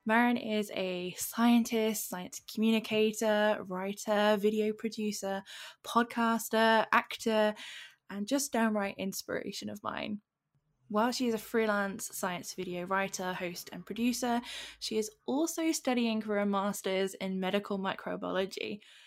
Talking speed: 120 wpm